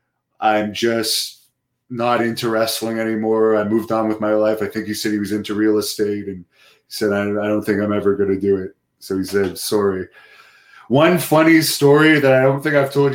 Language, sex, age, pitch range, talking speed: English, male, 20-39, 110-130 Hz, 210 wpm